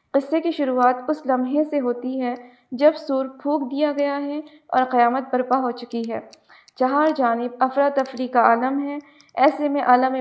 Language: Urdu